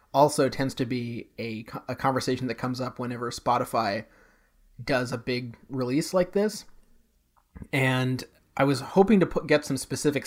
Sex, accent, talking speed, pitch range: male, American, 160 wpm, 125-150 Hz